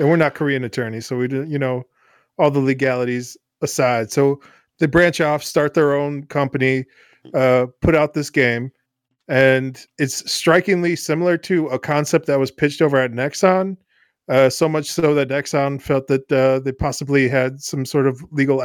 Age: 20-39